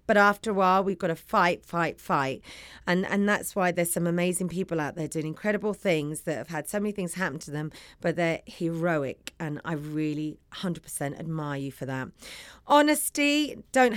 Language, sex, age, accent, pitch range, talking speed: English, female, 40-59, British, 170-225 Hz, 195 wpm